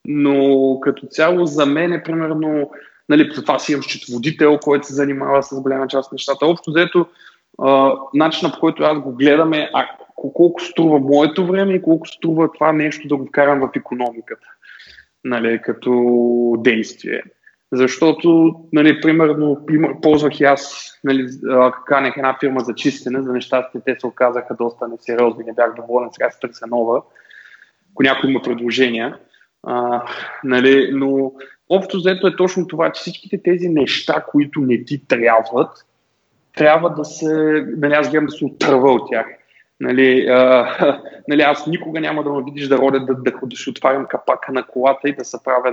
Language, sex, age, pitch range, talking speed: Bulgarian, male, 20-39, 130-155 Hz, 170 wpm